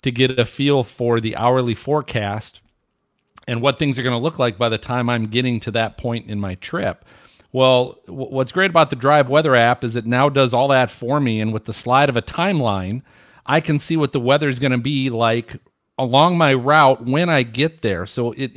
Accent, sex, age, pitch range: American, male, 40-59, 120-145 Hz